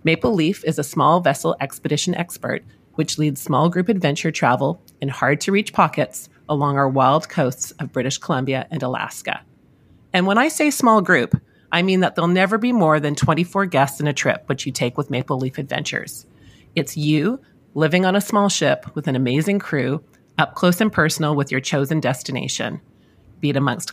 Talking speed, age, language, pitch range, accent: 185 wpm, 30-49, English, 135-175 Hz, American